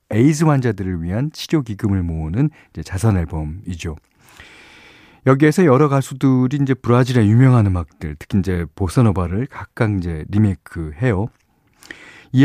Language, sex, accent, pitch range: Korean, male, native, 90-135 Hz